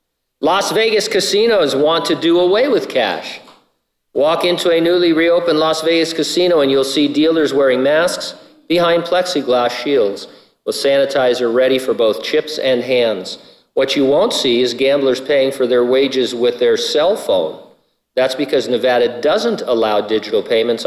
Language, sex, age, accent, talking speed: English, male, 50-69, American, 160 wpm